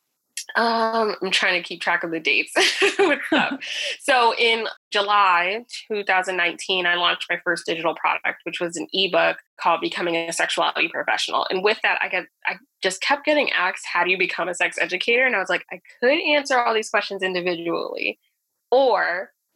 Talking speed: 175 wpm